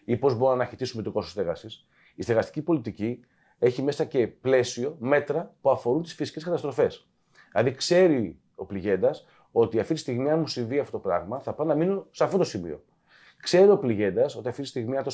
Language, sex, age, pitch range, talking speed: Greek, male, 30-49, 120-160 Hz, 195 wpm